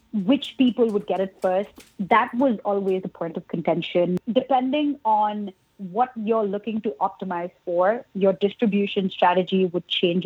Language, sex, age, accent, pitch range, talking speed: English, female, 30-49, Indian, 185-230 Hz, 150 wpm